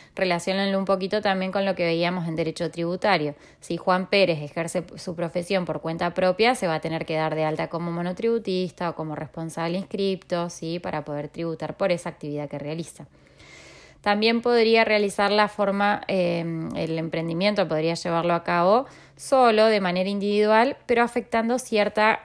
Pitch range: 165-205 Hz